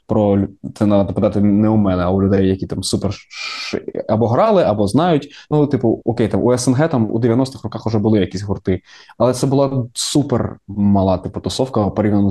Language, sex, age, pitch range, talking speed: Ukrainian, male, 20-39, 105-130 Hz, 185 wpm